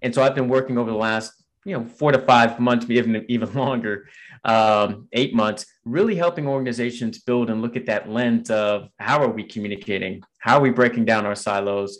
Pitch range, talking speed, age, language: 105-120 Hz, 210 wpm, 30-49, English